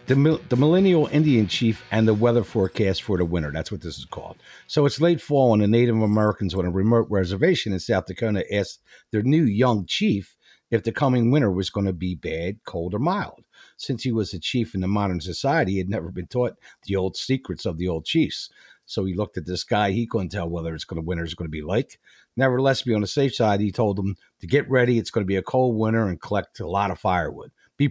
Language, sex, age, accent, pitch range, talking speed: English, male, 50-69, American, 95-135 Hz, 245 wpm